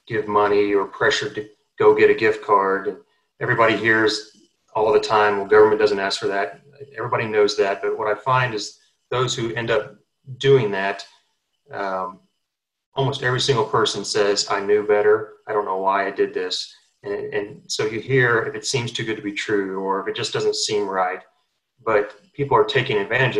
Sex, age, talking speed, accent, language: male, 30-49, 195 wpm, American, English